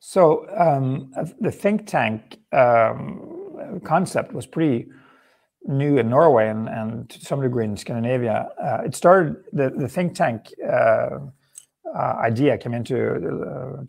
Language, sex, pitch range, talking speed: English, male, 115-145 Hz, 145 wpm